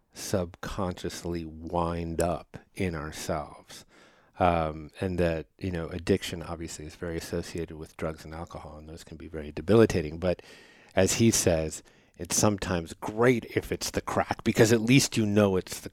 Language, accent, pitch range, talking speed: English, American, 85-105 Hz, 160 wpm